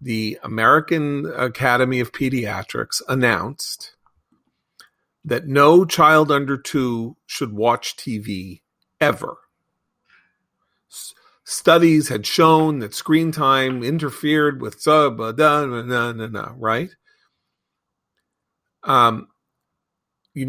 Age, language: 40-59, English